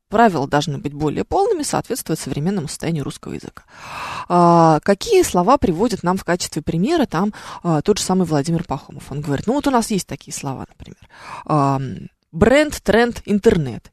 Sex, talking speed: female, 170 wpm